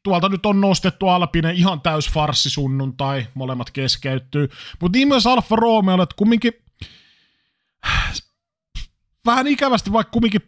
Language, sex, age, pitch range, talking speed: Finnish, male, 30-49, 130-185 Hz, 125 wpm